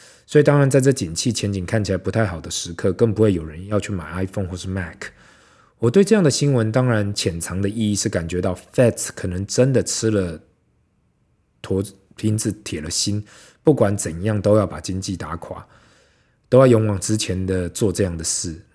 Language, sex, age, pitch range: Chinese, male, 20-39, 95-120 Hz